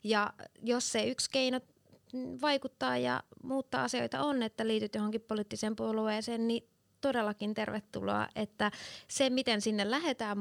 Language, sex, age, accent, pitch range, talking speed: Finnish, female, 20-39, native, 200-235 Hz, 135 wpm